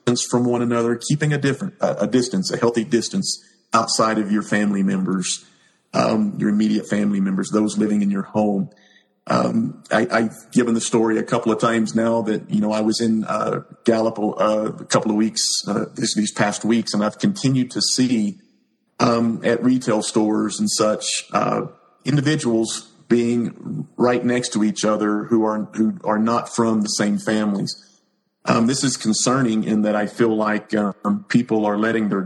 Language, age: English, 40-59